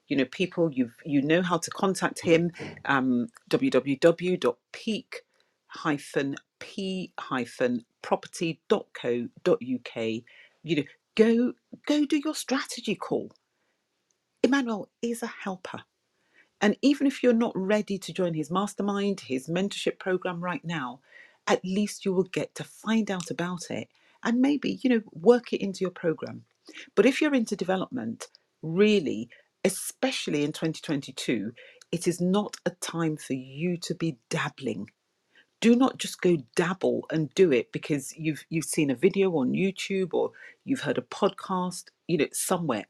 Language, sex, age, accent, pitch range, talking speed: English, female, 40-59, British, 160-230 Hz, 140 wpm